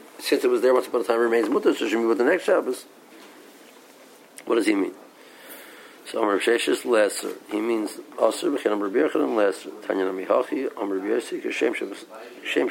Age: 50-69